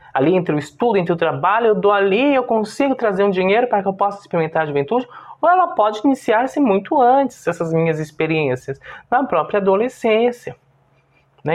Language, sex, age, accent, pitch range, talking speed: Portuguese, male, 20-39, Brazilian, 140-205 Hz, 180 wpm